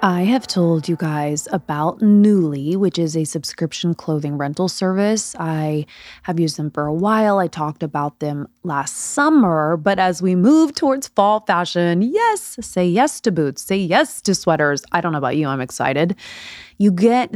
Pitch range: 160-215 Hz